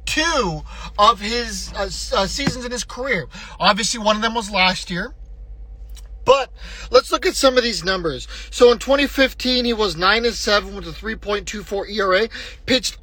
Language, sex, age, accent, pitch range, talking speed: English, male, 30-49, American, 175-245 Hz, 170 wpm